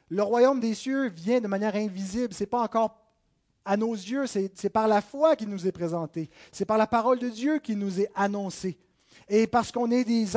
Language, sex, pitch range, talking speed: French, male, 185-240 Hz, 225 wpm